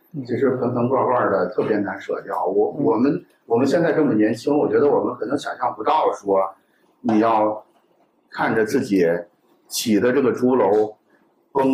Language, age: Chinese, 50-69